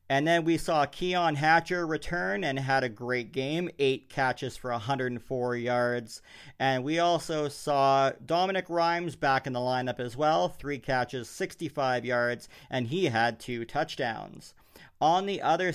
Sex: male